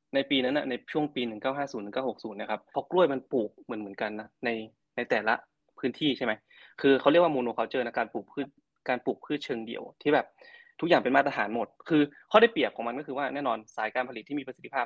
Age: 20-39